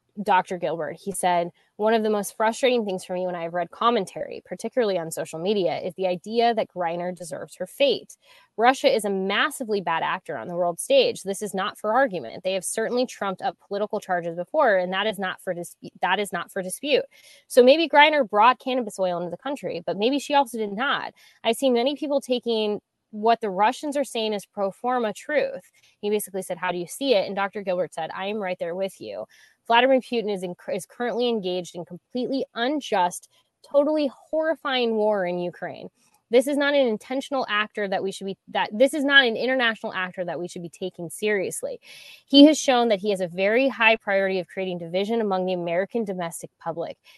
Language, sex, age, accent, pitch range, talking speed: English, female, 20-39, American, 185-245 Hz, 205 wpm